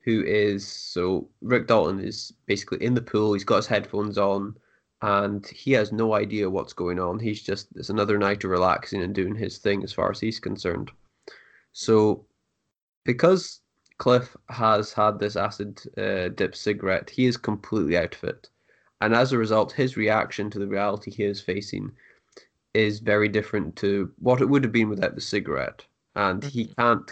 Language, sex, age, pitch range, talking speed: English, male, 20-39, 100-115 Hz, 180 wpm